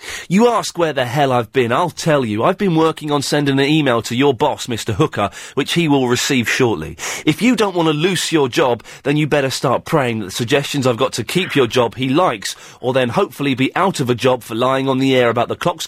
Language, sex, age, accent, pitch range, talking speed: English, male, 30-49, British, 125-165 Hz, 255 wpm